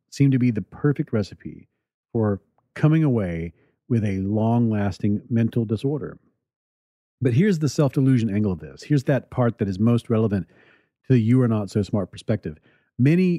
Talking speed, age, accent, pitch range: 150 wpm, 40-59, American, 105-135 Hz